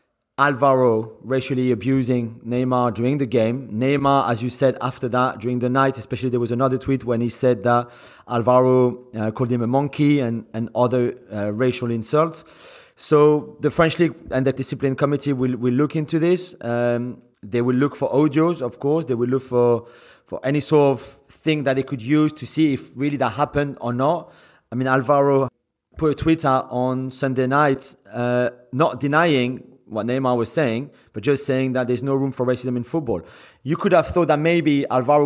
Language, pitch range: English, 125-145 Hz